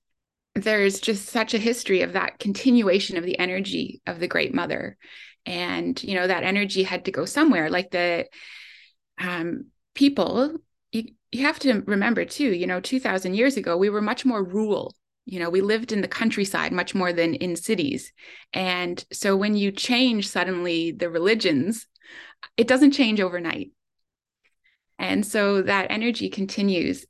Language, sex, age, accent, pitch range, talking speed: English, female, 20-39, American, 190-240 Hz, 160 wpm